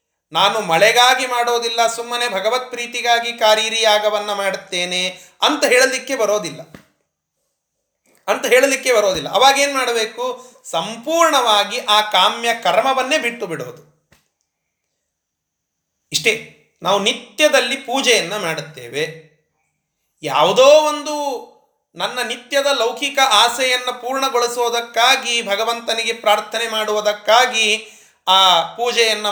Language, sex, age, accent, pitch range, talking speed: Kannada, male, 30-49, native, 200-260 Hz, 80 wpm